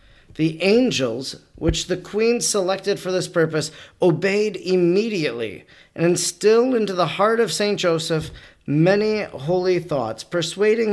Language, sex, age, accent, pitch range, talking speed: English, male, 40-59, American, 150-195 Hz, 125 wpm